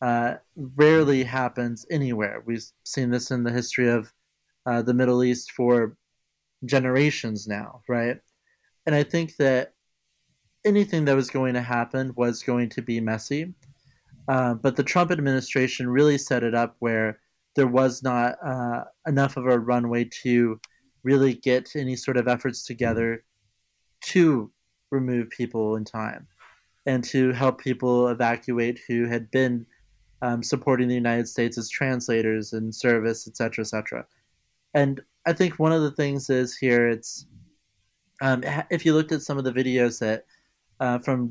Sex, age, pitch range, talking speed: male, 30-49, 120-135 Hz, 155 wpm